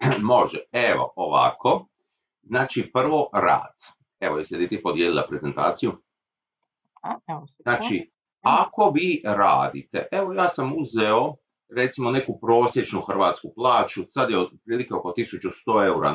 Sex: male